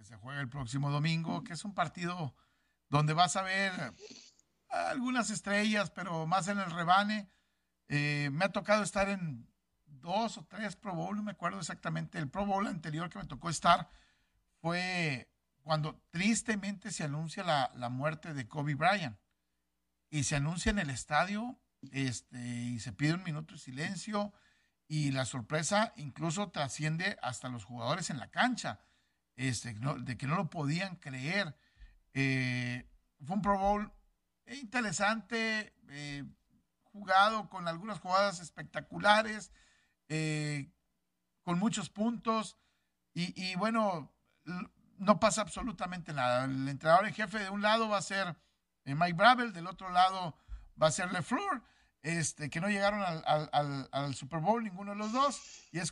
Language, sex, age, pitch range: Spanish, male, 60-79, 145-200 Hz